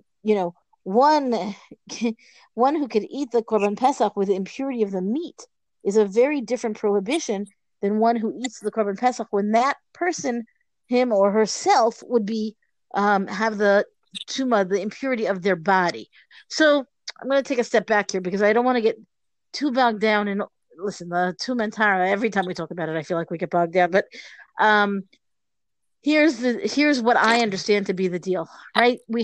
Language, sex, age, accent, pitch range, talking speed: English, female, 50-69, American, 200-250 Hz, 195 wpm